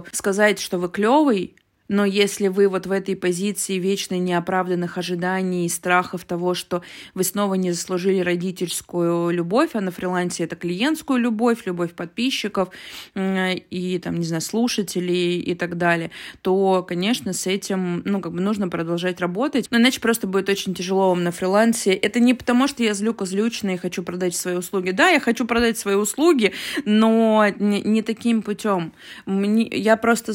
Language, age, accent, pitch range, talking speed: Russian, 20-39, native, 180-215 Hz, 160 wpm